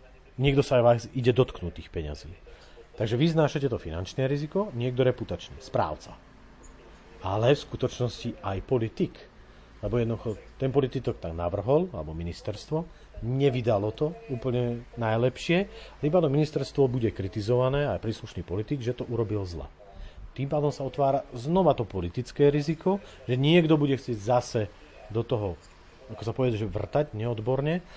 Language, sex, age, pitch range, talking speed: Slovak, male, 40-59, 105-140 Hz, 140 wpm